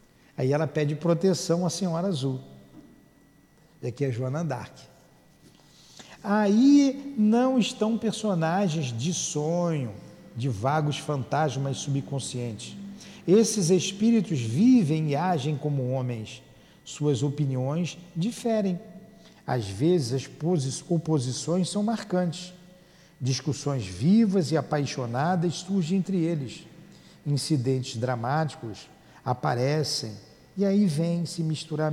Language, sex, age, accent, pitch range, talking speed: Portuguese, male, 50-69, Brazilian, 135-190 Hz, 100 wpm